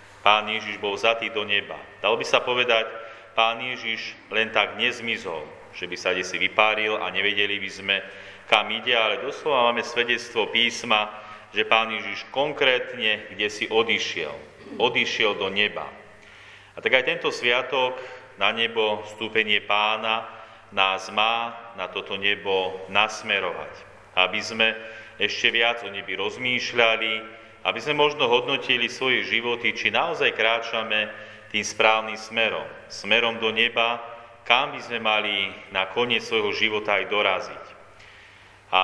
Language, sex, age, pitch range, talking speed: Slovak, male, 40-59, 105-115 Hz, 140 wpm